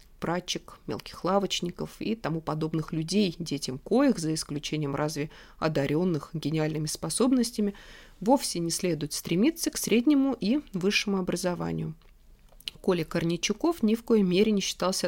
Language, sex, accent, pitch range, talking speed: Russian, female, native, 155-215 Hz, 125 wpm